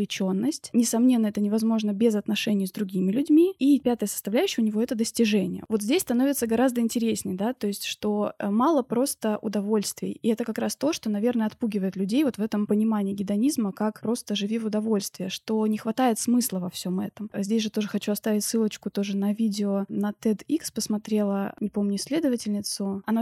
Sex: female